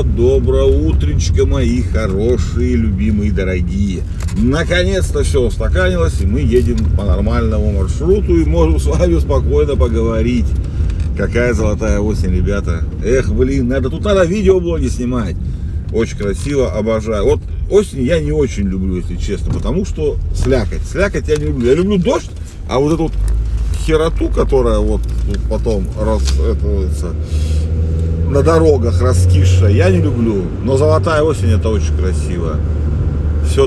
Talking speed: 130 wpm